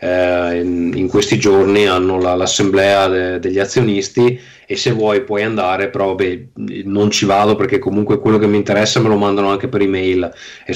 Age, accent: 30-49, native